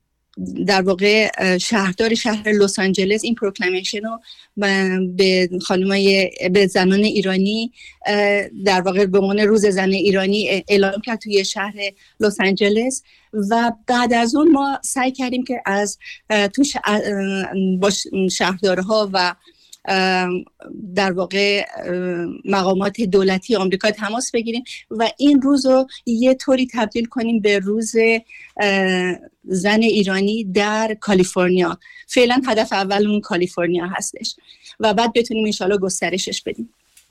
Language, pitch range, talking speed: Persian, 190-225 Hz, 120 wpm